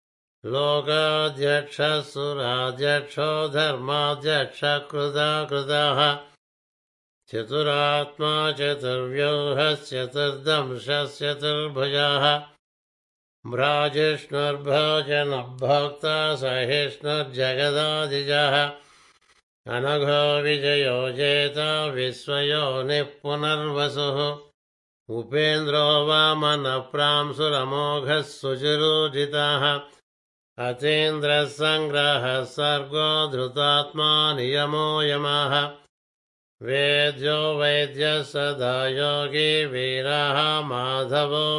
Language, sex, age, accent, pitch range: Telugu, male, 60-79, native, 140-150 Hz